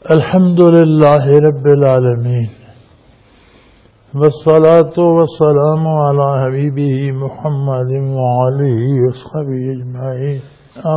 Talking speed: 65 wpm